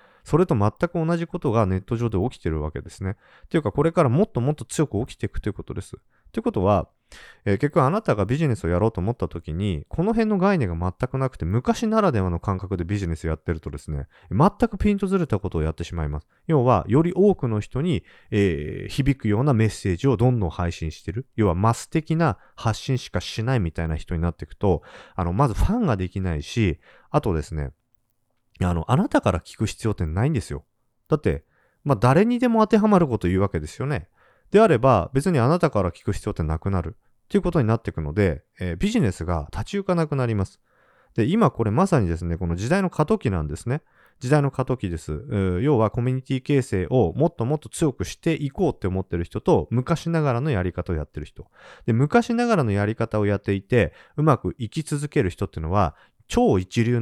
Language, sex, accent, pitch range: Japanese, male, native, 90-150 Hz